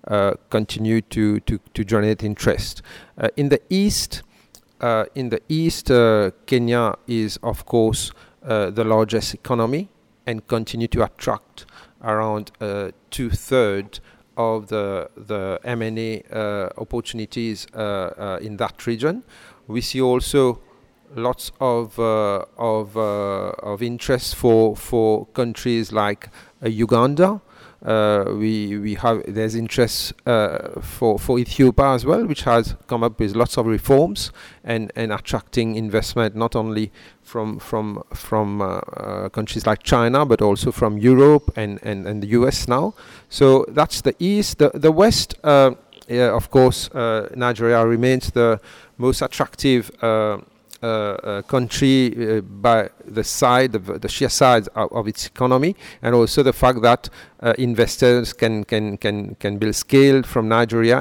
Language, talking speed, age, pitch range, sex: English, 150 wpm, 40-59, 105-125 Hz, male